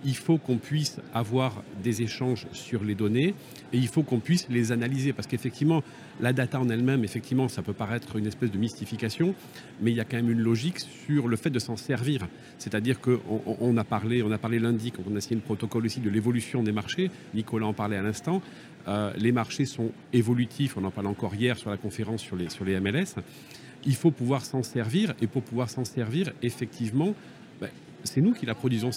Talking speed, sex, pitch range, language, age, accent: 220 wpm, male, 110-135 Hz, French, 40-59, French